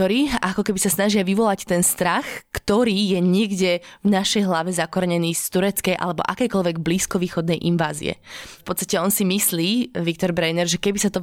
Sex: female